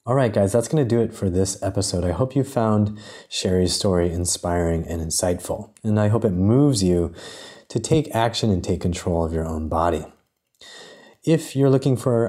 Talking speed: 195 wpm